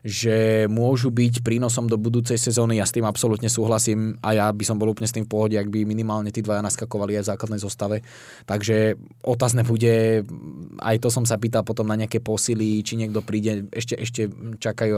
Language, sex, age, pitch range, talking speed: Slovak, male, 20-39, 105-120 Hz, 200 wpm